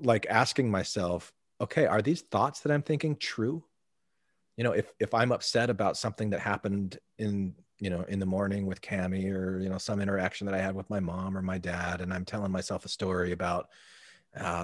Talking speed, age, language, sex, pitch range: 210 wpm, 30-49, English, male, 95-115 Hz